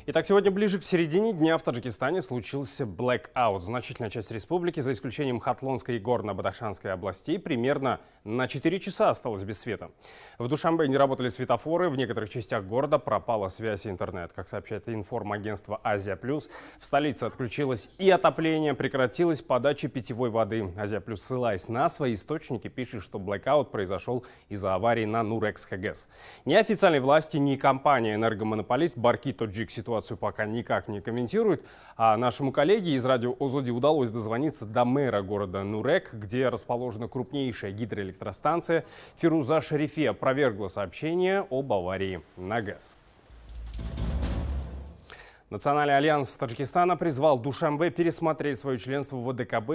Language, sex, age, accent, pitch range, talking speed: Russian, male, 20-39, native, 110-145 Hz, 140 wpm